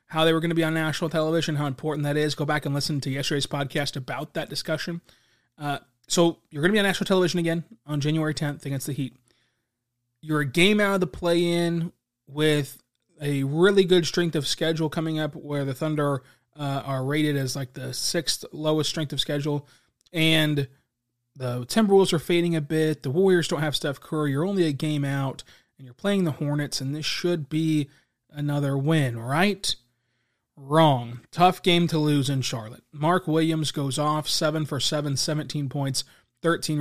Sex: male